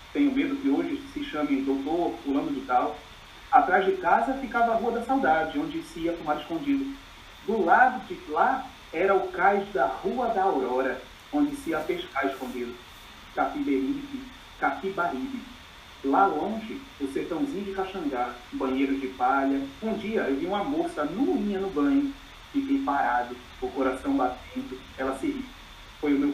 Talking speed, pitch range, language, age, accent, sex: 160 wpm, 175-290 Hz, Portuguese, 40-59, Brazilian, male